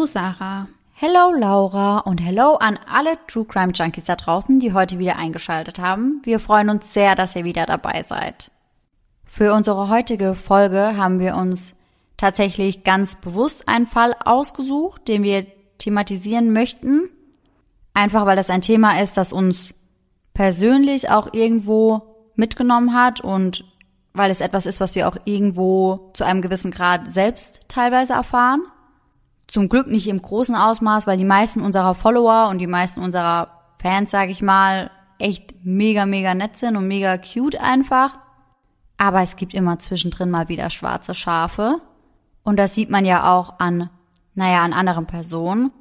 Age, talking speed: 20-39, 160 wpm